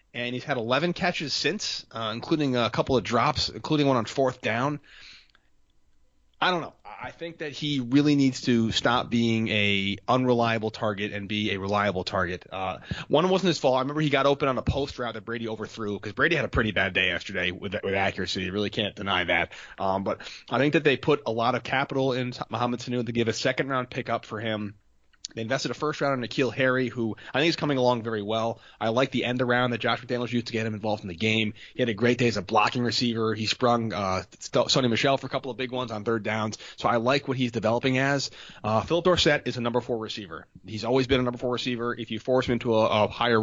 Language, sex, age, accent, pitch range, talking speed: English, male, 30-49, American, 105-130 Hz, 245 wpm